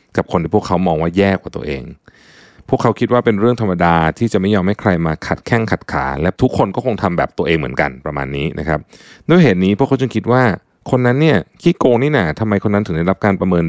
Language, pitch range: Thai, 85-115 Hz